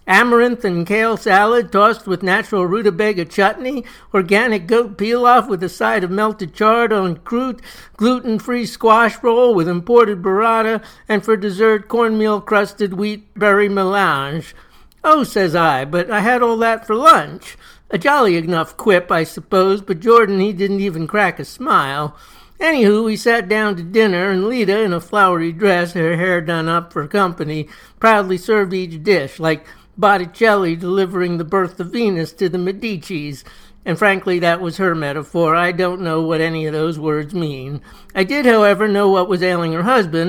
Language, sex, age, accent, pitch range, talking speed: English, male, 60-79, American, 170-215 Hz, 170 wpm